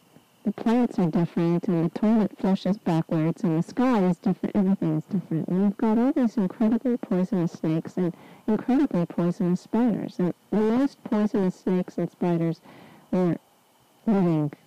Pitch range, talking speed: 165-210 Hz, 155 wpm